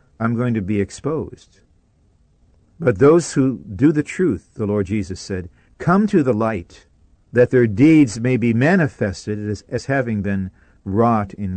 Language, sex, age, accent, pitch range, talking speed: English, male, 50-69, American, 95-125 Hz, 160 wpm